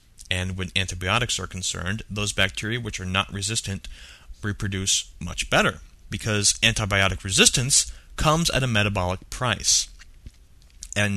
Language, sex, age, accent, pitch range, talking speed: English, male, 30-49, American, 95-125 Hz, 125 wpm